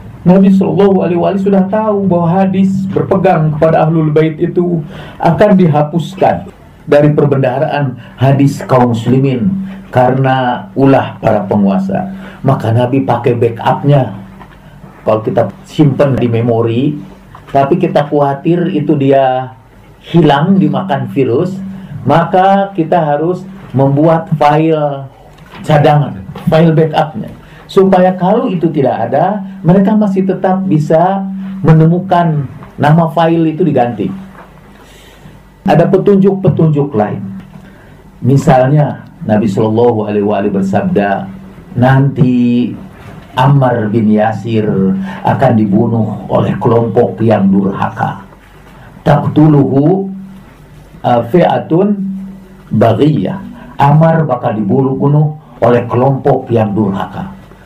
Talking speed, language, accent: 95 wpm, Indonesian, native